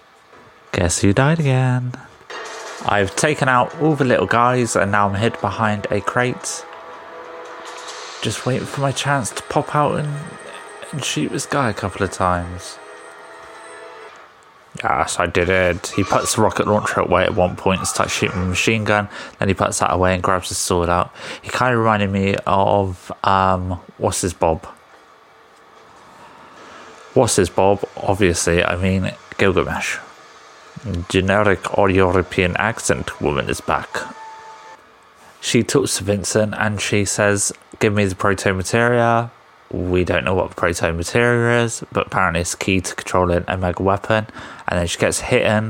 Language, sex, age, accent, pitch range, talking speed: English, male, 20-39, British, 90-115 Hz, 160 wpm